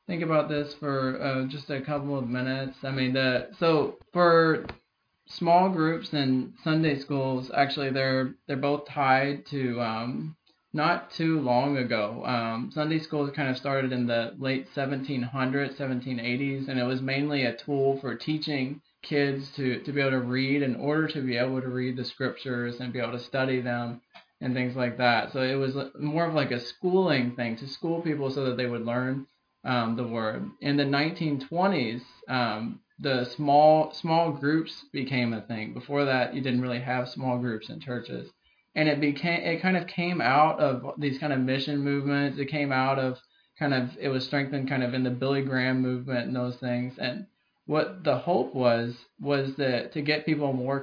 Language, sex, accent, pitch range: English, male, American, 125-145 Hz